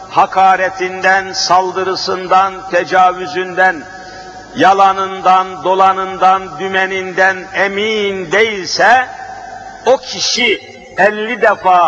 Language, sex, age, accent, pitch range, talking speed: Turkish, male, 50-69, native, 190-235 Hz, 60 wpm